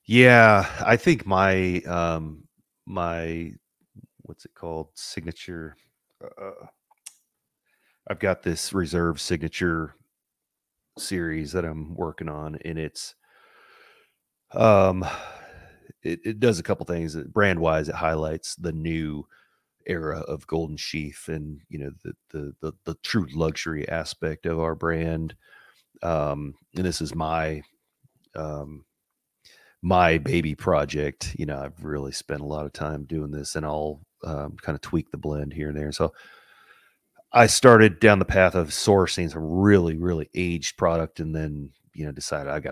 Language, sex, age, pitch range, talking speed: English, male, 30-49, 75-85 Hz, 145 wpm